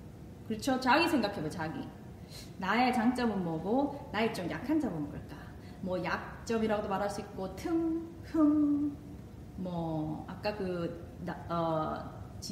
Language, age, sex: Korean, 20-39, female